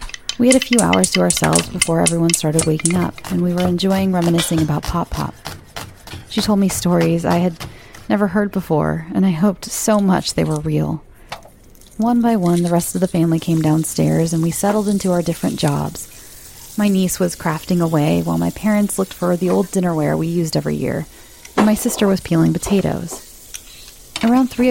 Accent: American